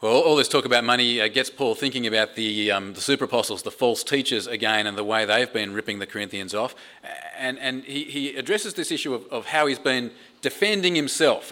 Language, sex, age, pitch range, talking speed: English, male, 30-49, 120-165 Hz, 215 wpm